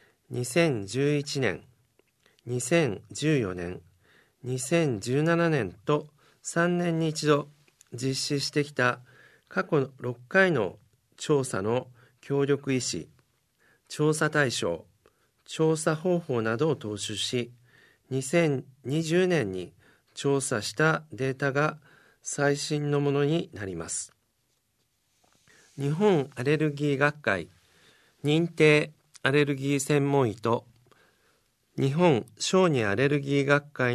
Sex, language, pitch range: male, Japanese, 125-155 Hz